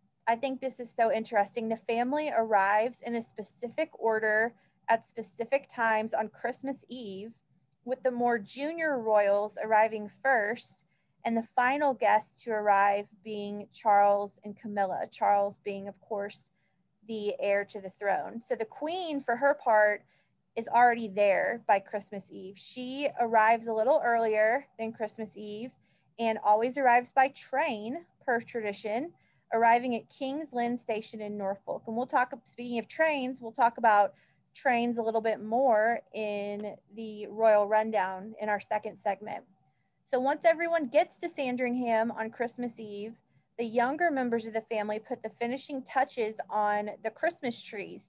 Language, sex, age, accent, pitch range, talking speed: English, female, 20-39, American, 210-250 Hz, 155 wpm